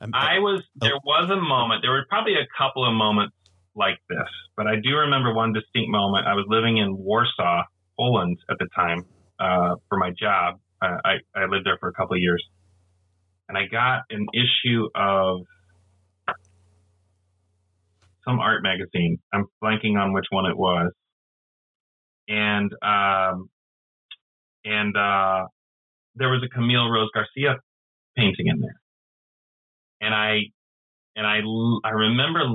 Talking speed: 150 wpm